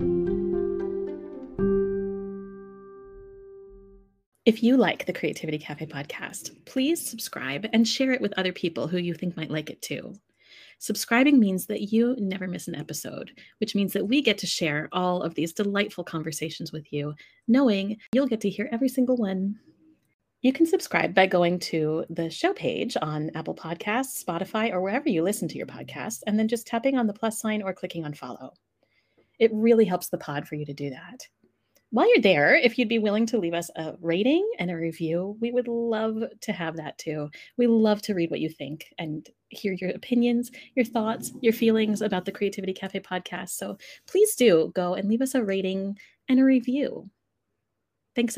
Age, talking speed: 30-49, 185 wpm